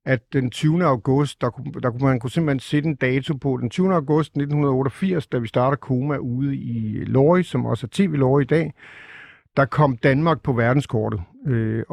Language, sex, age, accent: Danish, male, 50-69, native